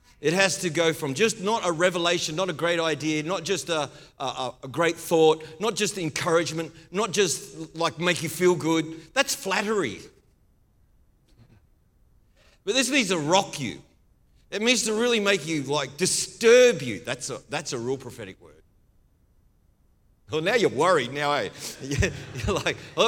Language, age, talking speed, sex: English, 40-59, 165 wpm, male